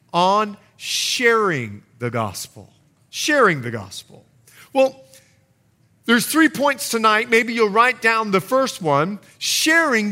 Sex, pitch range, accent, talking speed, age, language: male, 165-260 Hz, American, 120 wpm, 40-59, English